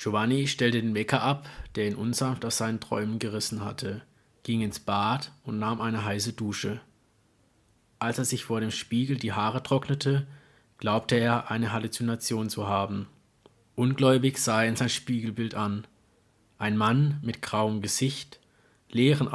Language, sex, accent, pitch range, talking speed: German, male, German, 110-130 Hz, 150 wpm